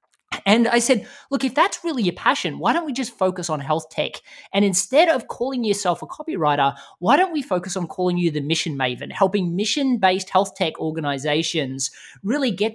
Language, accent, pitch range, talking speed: English, Australian, 165-225 Hz, 195 wpm